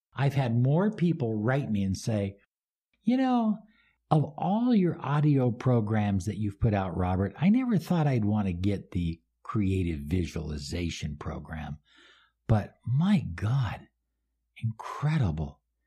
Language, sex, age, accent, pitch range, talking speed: English, male, 60-79, American, 80-135 Hz, 130 wpm